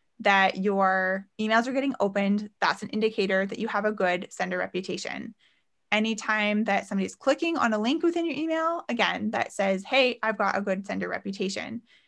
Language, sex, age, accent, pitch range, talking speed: English, female, 20-39, American, 200-260 Hz, 180 wpm